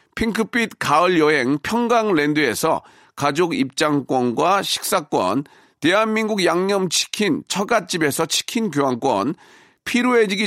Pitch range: 155-205 Hz